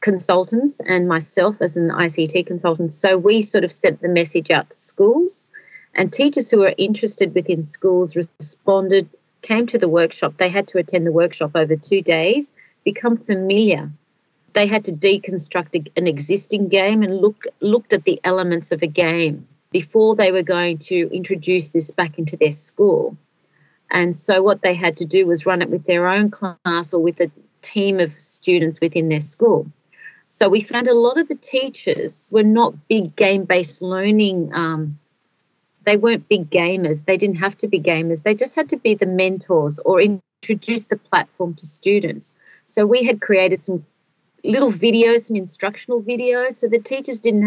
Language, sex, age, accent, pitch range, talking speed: English, female, 40-59, Australian, 175-210 Hz, 180 wpm